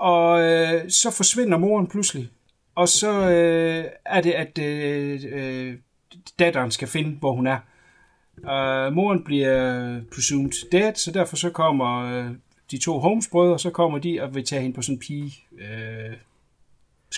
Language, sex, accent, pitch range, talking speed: Danish, male, native, 130-180 Hz, 155 wpm